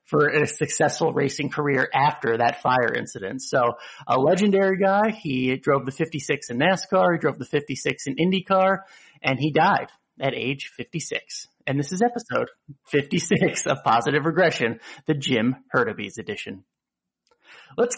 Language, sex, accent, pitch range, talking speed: English, male, American, 140-190 Hz, 145 wpm